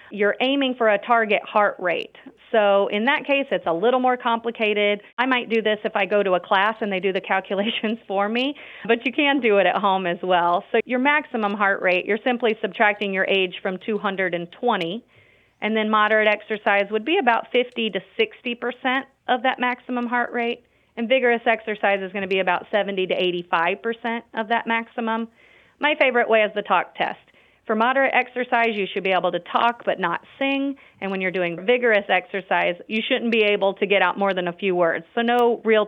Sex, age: female, 40-59